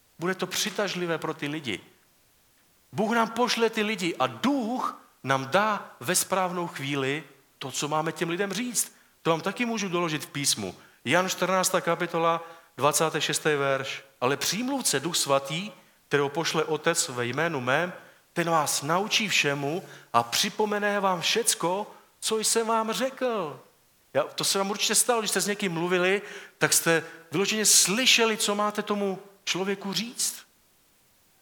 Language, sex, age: Czech, male, 40-59